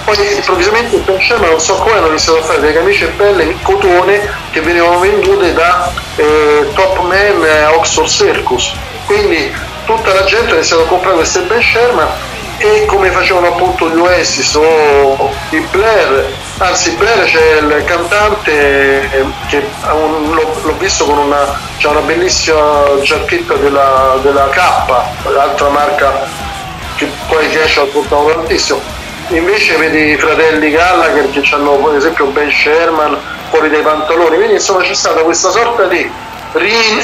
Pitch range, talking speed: 155-205 Hz, 160 wpm